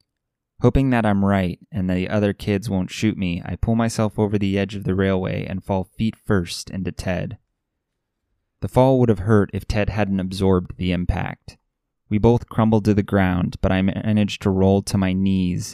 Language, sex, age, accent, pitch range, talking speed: English, male, 20-39, American, 95-110 Hz, 195 wpm